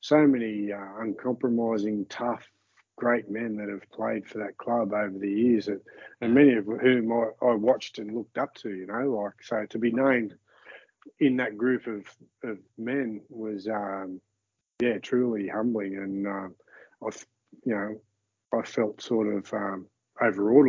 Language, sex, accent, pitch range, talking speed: English, male, Australian, 100-115 Hz, 160 wpm